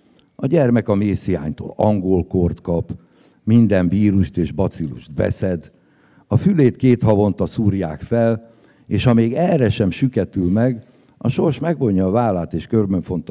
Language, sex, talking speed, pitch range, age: Hungarian, male, 145 wpm, 90-115 Hz, 60-79